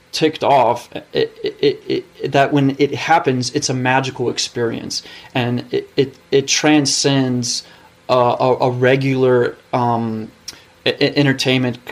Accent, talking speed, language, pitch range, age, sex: American, 125 wpm, English, 115-140 Hz, 30-49, male